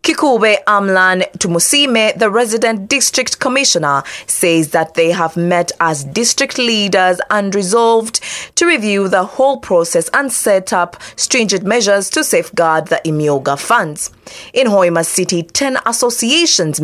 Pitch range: 170-245 Hz